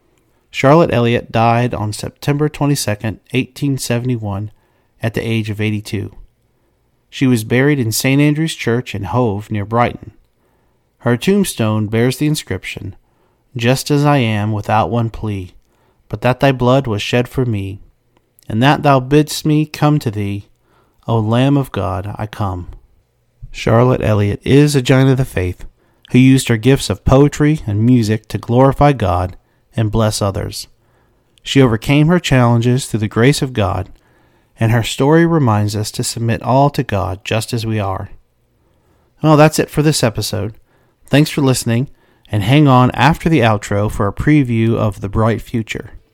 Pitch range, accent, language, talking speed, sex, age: 110-135 Hz, American, English, 160 wpm, male, 40-59